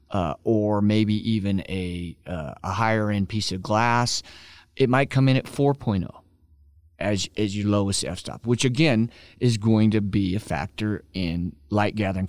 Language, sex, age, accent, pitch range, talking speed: English, male, 30-49, American, 95-120 Hz, 155 wpm